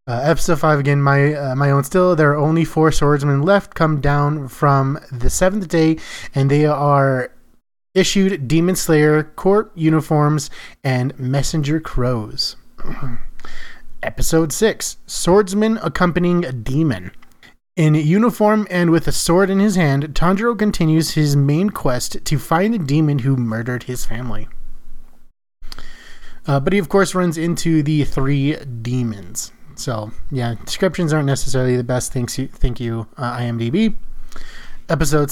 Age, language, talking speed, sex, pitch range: 30-49, English, 140 wpm, male, 130-170 Hz